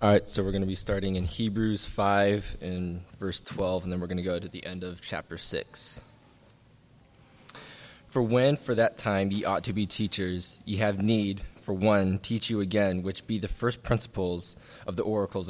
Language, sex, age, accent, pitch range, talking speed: English, male, 20-39, American, 95-110 Hz, 200 wpm